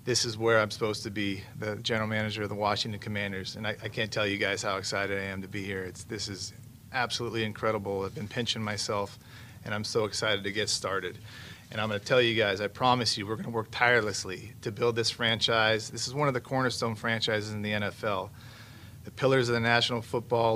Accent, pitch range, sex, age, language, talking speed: American, 105-120 Hz, male, 40-59, English, 225 wpm